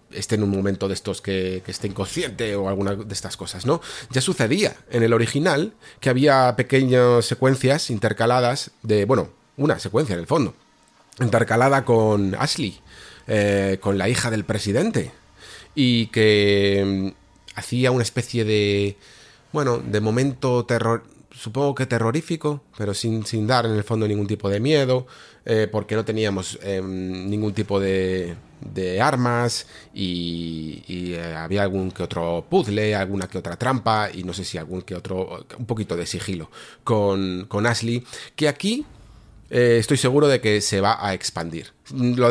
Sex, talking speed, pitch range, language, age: male, 160 wpm, 100-125 Hz, Spanish, 30-49